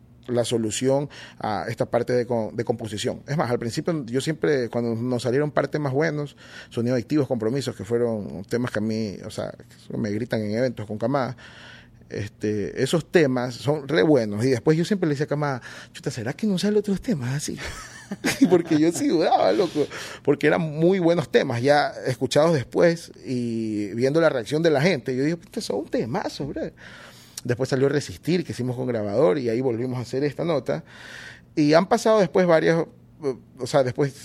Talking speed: 185 wpm